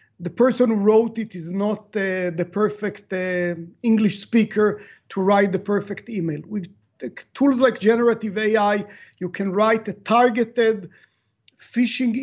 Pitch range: 190-235 Hz